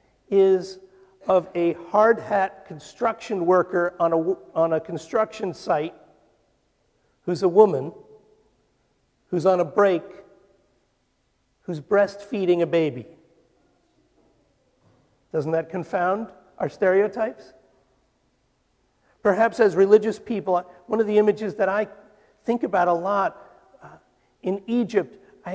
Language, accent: English, American